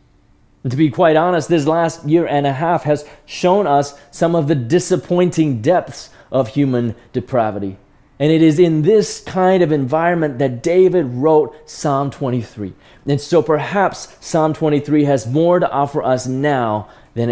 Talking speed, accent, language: 165 wpm, American, English